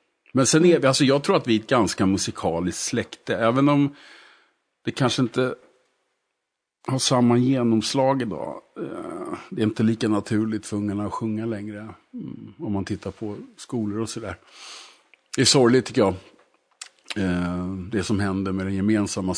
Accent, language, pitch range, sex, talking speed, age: Norwegian, Swedish, 95-120 Hz, male, 160 wpm, 50-69